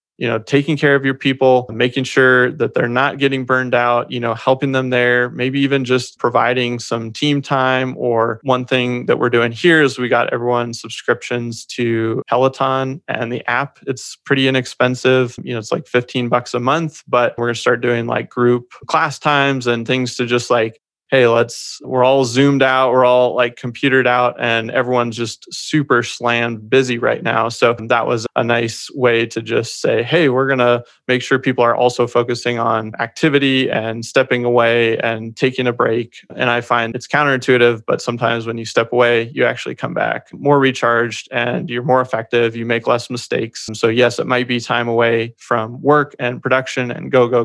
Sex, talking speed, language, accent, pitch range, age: male, 195 wpm, English, American, 120-130 Hz, 20-39